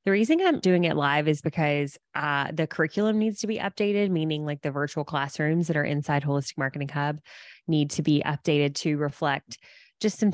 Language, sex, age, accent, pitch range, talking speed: English, female, 20-39, American, 145-185 Hz, 195 wpm